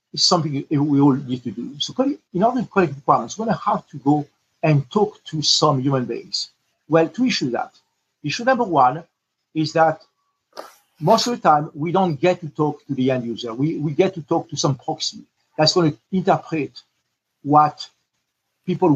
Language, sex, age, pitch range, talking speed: English, male, 50-69, 145-195 Hz, 195 wpm